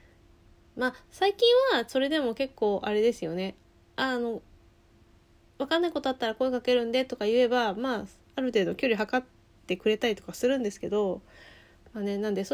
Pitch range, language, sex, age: 190-250 Hz, Japanese, female, 20-39